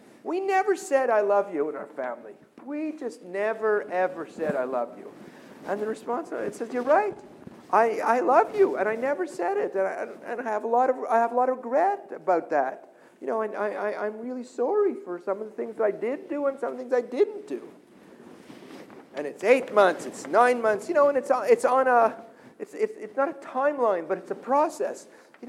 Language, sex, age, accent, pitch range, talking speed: English, male, 50-69, American, 200-290 Hz, 235 wpm